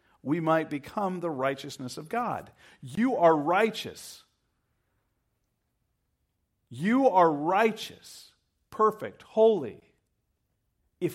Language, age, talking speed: English, 50-69, 85 wpm